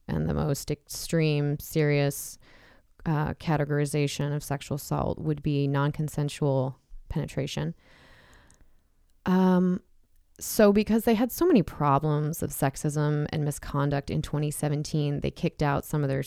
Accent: American